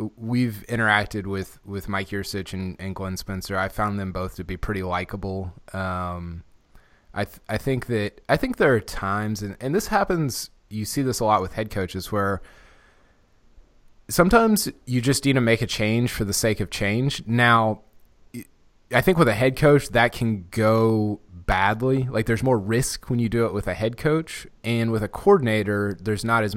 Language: English